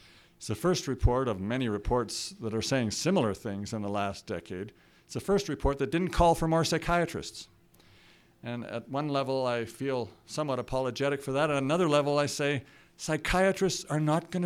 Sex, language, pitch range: male, English, 115-145 Hz